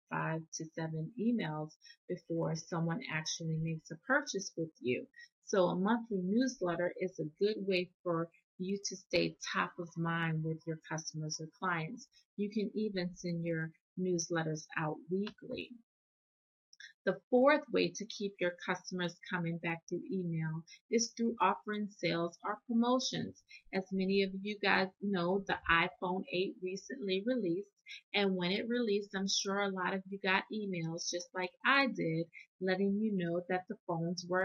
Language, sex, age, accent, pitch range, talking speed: English, female, 30-49, American, 165-205 Hz, 160 wpm